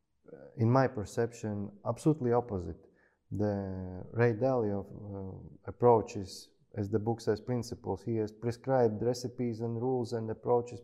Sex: male